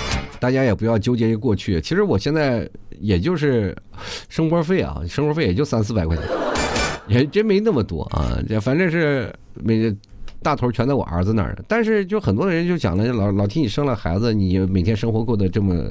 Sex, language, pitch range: male, Chinese, 95-145 Hz